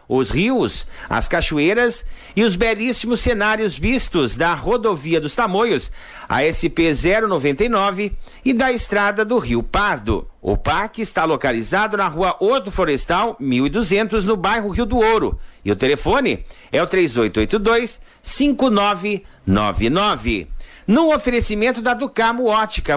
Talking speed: 120 wpm